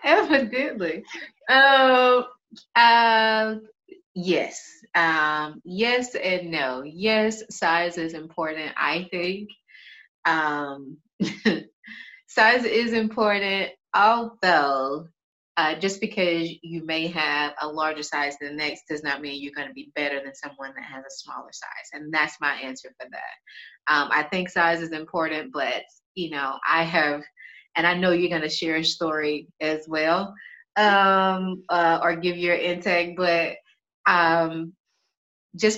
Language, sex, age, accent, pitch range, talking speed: English, female, 30-49, American, 150-190 Hz, 140 wpm